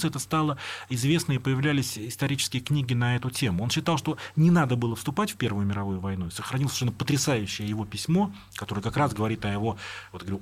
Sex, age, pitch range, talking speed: male, 30-49, 115-160 Hz, 195 wpm